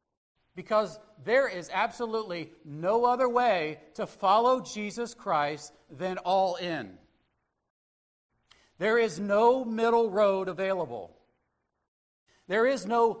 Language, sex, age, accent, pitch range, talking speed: English, male, 40-59, American, 160-220 Hz, 105 wpm